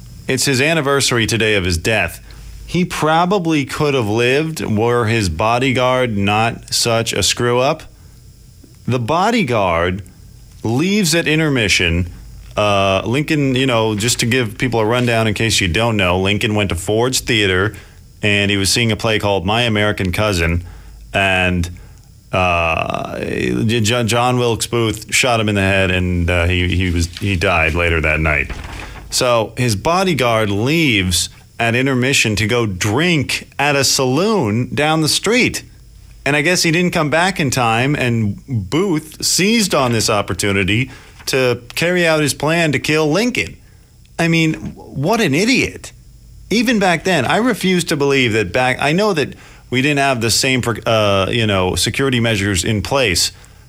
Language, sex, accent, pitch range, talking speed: English, male, American, 100-135 Hz, 155 wpm